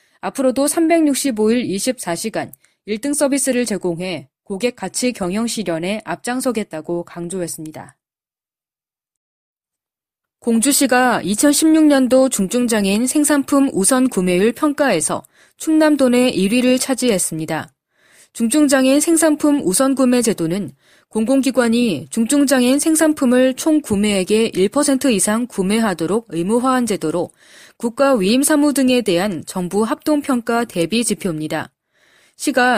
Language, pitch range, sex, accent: Korean, 195-275 Hz, female, native